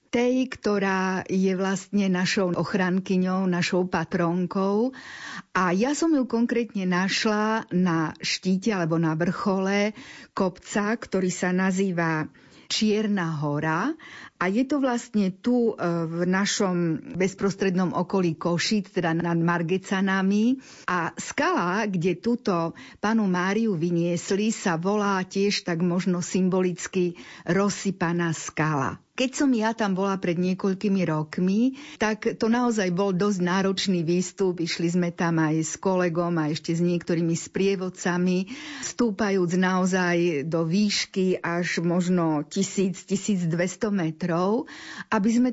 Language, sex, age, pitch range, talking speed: Slovak, female, 50-69, 175-210 Hz, 120 wpm